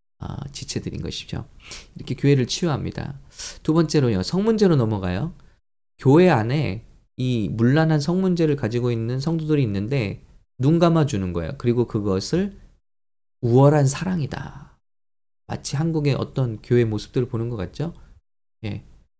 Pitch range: 110-150 Hz